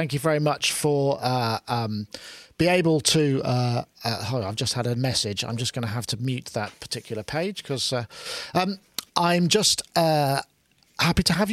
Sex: male